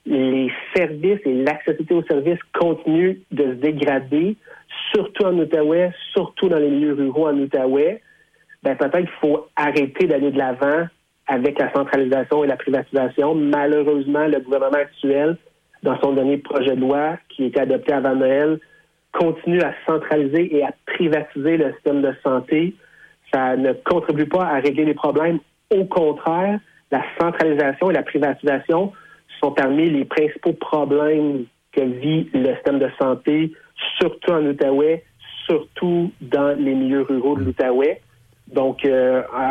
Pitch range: 135-170 Hz